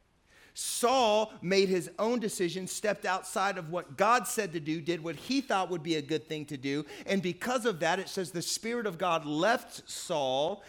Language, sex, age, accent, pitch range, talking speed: English, male, 40-59, American, 180-235 Hz, 200 wpm